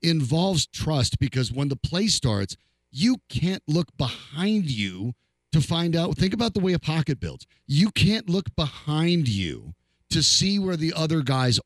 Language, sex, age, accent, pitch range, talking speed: English, male, 40-59, American, 120-165 Hz, 170 wpm